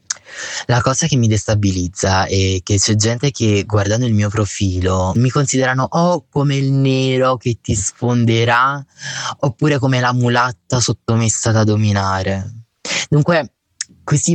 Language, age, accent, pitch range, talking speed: Italian, 20-39, native, 110-130 Hz, 135 wpm